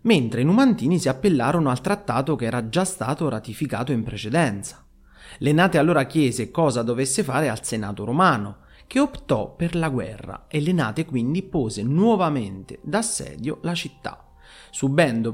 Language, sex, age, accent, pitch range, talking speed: Italian, male, 30-49, native, 115-180 Hz, 145 wpm